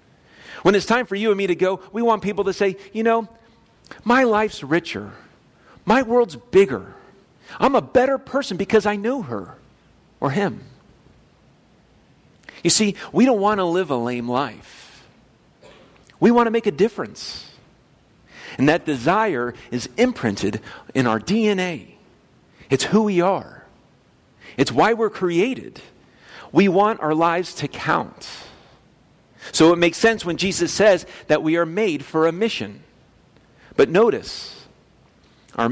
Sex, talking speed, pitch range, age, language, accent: male, 145 wpm, 155-215 Hz, 40-59, English, American